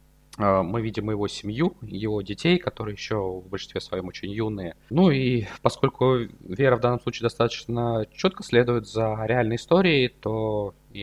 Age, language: 20-39, Russian